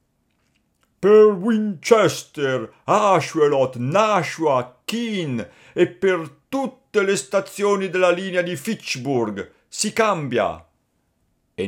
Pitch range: 115-175 Hz